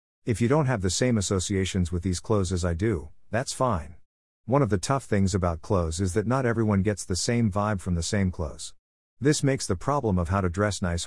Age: 50-69